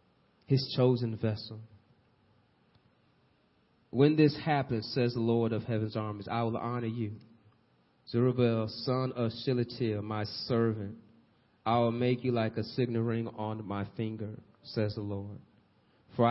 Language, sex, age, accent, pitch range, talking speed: English, male, 30-49, American, 110-130 Hz, 135 wpm